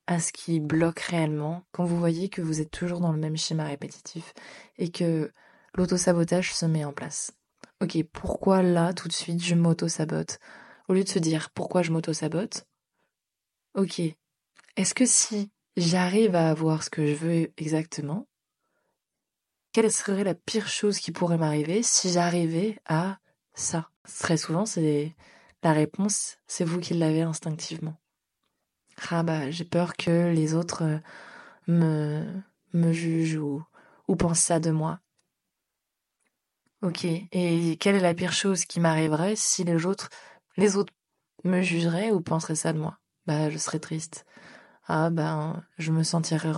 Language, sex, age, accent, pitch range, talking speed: French, female, 20-39, French, 160-185 Hz, 155 wpm